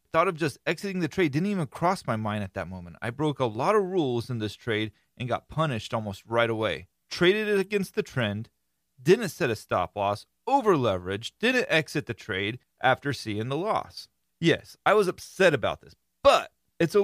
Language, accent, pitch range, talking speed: English, American, 115-165 Hz, 205 wpm